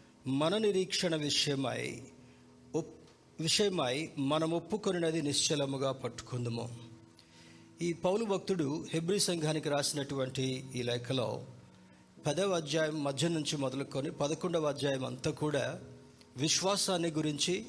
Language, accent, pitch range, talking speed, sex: Telugu, native, 130-170 Hz, 95 wpm, male